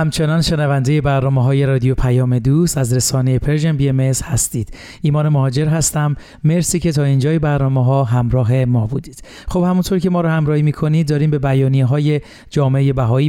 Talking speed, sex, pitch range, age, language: 160 wpm, male, 130-155 Hz, 40-59, Persian